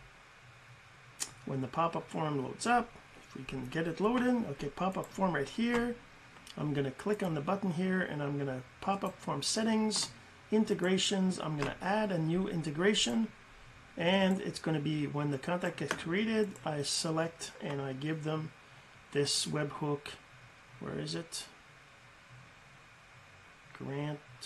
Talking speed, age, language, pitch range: 155 wpm, 40-59, English, 140-195 Hz